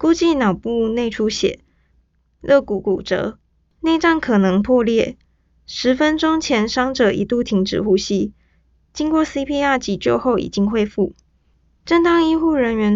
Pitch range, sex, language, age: 195-250 Hz, female, Chinese, 20-39